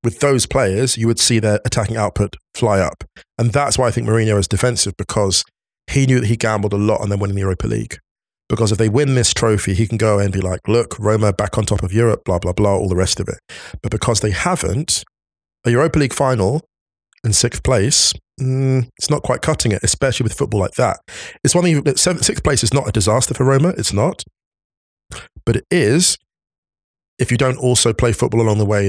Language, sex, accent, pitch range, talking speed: English, male, British, 100-120 Hz, 225 wpm